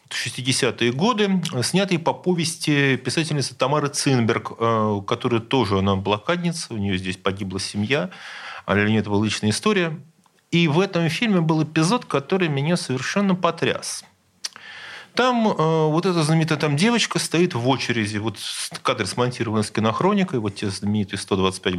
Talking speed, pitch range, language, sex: 145 wpm, 105-160 Hz, Russian, male